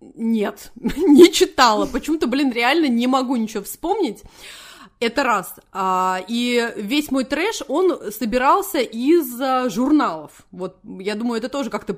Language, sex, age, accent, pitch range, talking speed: Russian, female, 20-39, native, 220-300 Hz, 130 wpm